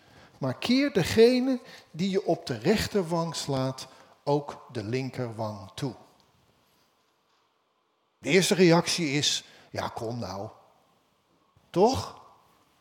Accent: Dutch